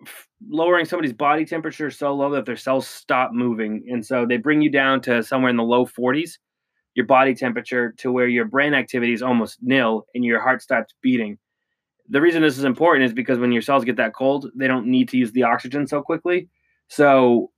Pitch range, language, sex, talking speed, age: 120-140 Hz, English, male, 210 wpm, 20-39